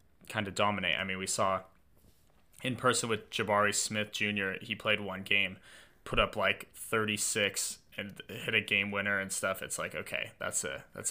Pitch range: 100-125 Hz